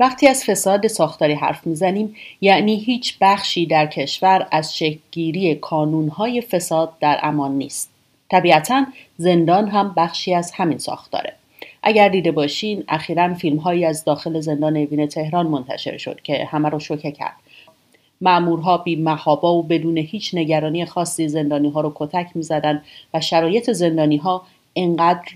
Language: Persian